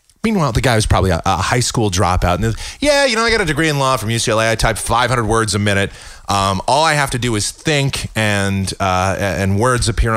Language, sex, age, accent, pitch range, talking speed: English, male, 30-49, American, 95-160 Hz, 240 wpm